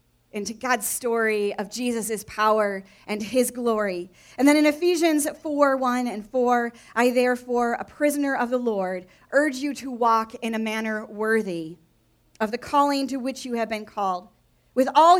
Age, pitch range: 30-49, 220-280 Hz